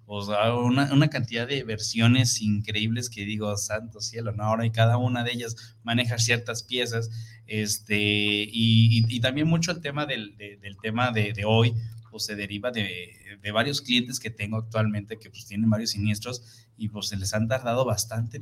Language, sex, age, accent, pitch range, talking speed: Spanish, male, 20-39, Mexican, 105-120 Hz, 190 wpm